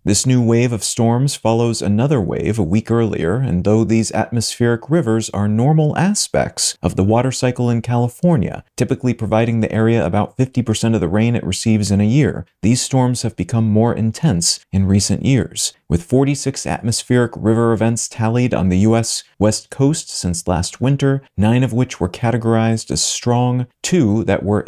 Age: 30-49